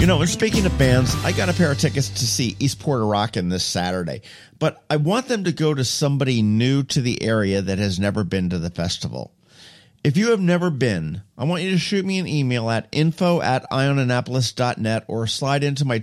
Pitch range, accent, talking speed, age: 105-140 Hz, American, 215 wpm, 50-69